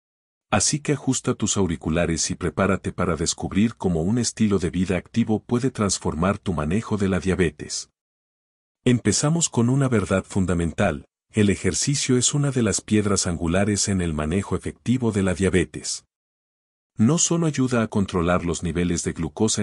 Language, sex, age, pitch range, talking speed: Spanish, male, 50-69, 90-115 Hz, 155 wpm